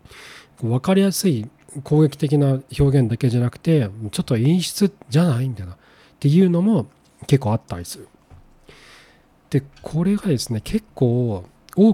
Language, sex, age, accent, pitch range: Japanese, male, 40-59, native, 120-160 Hz